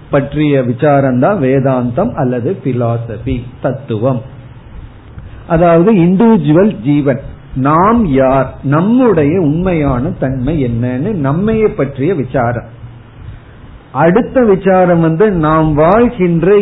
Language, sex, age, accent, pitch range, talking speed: Tamil, male, 50-69, native, 130-180 Hz, 75 wpm